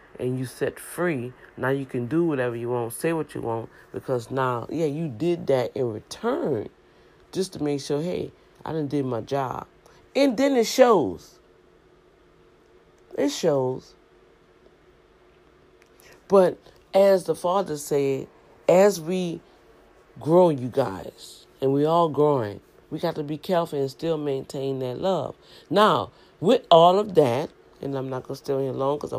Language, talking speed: English, 160 wpm